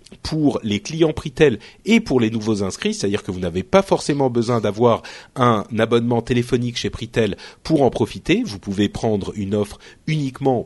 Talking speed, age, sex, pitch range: 175 wpm, 40-59, male, 100-150 Hz